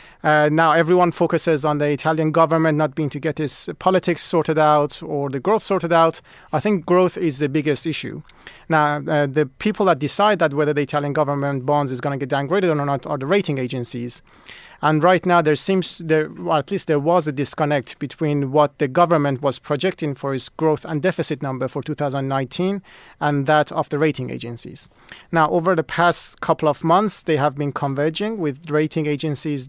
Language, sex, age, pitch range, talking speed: English, male, 30-49, 145-170 Hz, 205 wpm